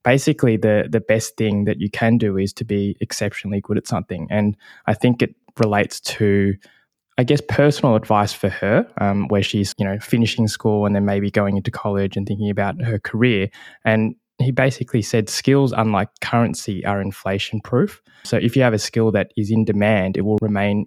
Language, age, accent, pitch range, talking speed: English, 20-39, Australian, 100-120 Hz, 200 wpm